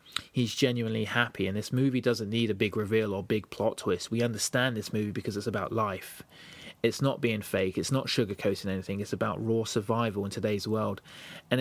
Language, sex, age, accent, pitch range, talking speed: English, male, 20-39, British, 100-120 Hz, 200 wpm